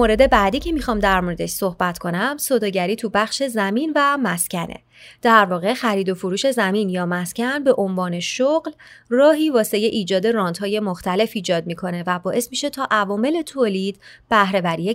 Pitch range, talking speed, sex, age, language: 185-250 Hz, 160 wpm, female, 30-49, Persian